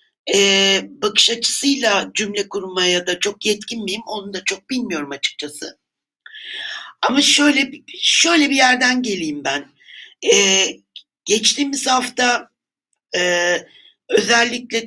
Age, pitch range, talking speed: 60-79, 190-260 Hz, 100 wpm